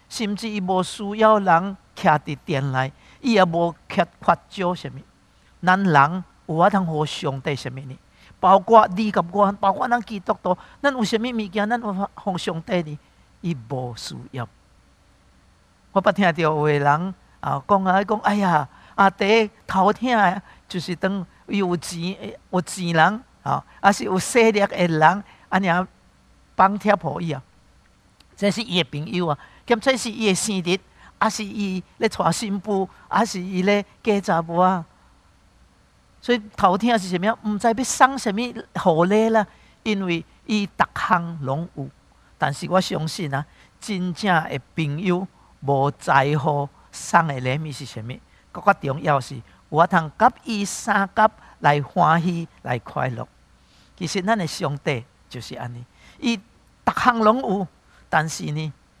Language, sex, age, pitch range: English, male, 50-69, 150-205 Hz